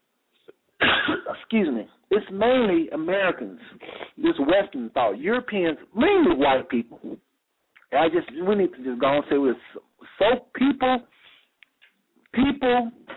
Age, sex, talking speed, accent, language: 50-69, male, 125 wpm, American, English